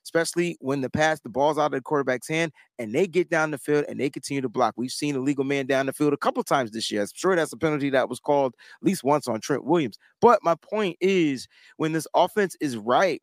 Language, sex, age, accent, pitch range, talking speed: English, male, 30-49, American, 150-225 Hz, 265 wpm